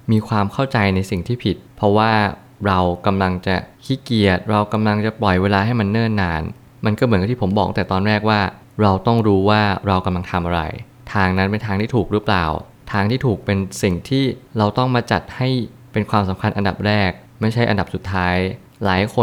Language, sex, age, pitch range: Thai, male, 20-39, 95-115 Hz